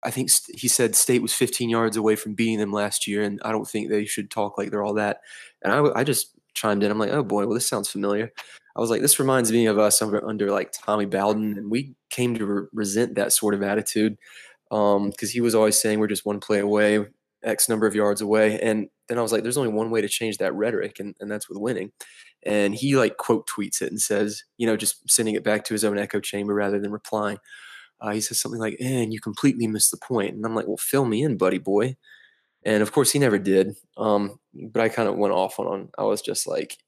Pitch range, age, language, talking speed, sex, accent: 105-115 Hz, 20-39, English, 250 wpm, male, American